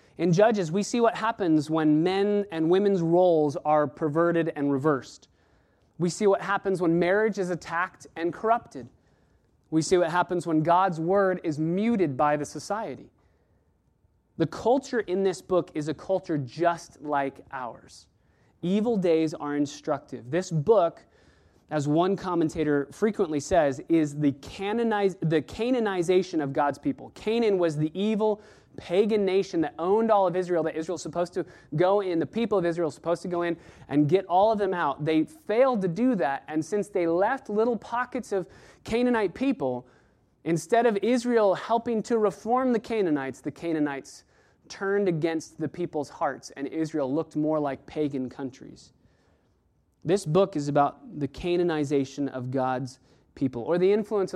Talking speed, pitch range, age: 160 wpm, 150-200 Hz, 30-49